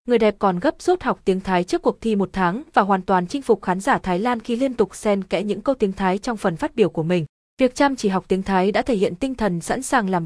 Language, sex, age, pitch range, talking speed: Vietnamese, female, 20-39, 185-240 Hz, 300 wpm